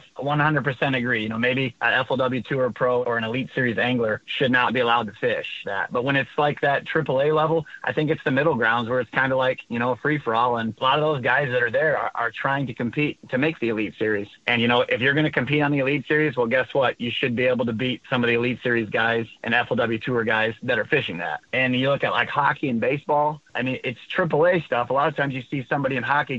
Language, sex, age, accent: English, male, 30-49, American